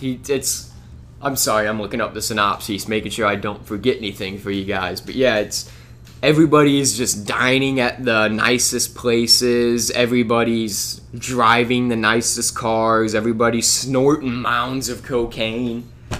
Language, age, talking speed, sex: English, 20-39, 135 wpm, male